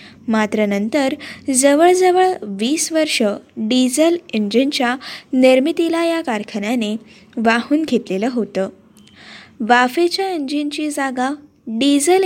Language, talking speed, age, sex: Marathi, 85 wpm, 10-29, female